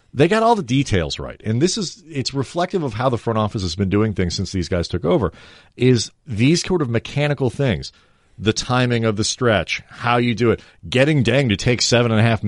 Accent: American